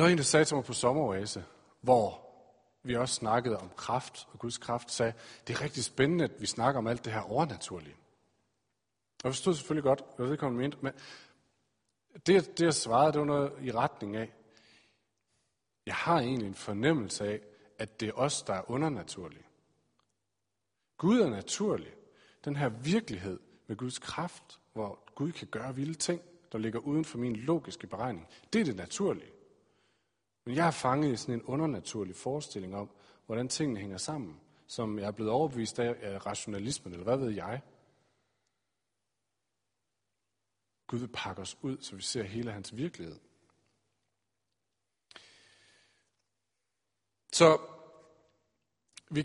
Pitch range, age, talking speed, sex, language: 105-140 Hz, 40-59, 150 wpm, male, Danish